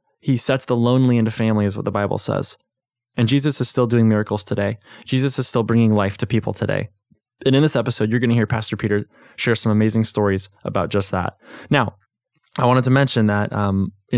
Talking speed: 215 wpm